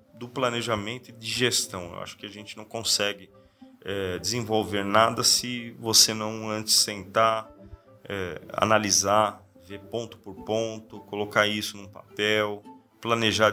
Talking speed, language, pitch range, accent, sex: 140 wpm, Portuguese, 105-125 Hz, Brazilian, male